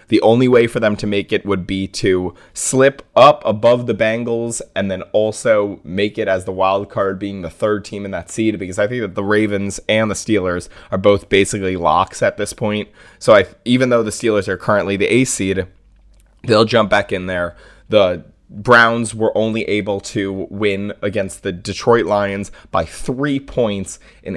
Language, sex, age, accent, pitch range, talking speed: English, male, 20-39, American, 95-110 Hz, 190 wpm